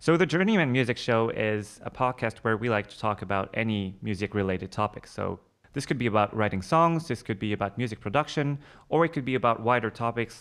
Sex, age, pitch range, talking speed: male, 20-39, 100-125 Hz, 220 wpm